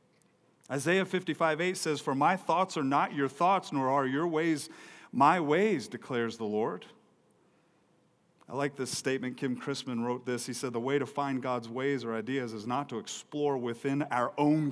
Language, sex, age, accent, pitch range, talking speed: English, male, 40-59, American, 130-225 Hz, 190 wpm